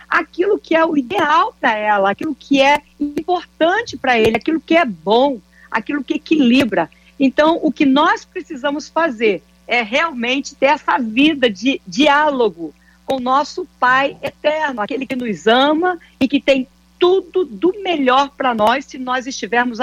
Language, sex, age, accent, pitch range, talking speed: Portuguese, female, 50-69, Brazilian, 235-310 Hz, 160 wpm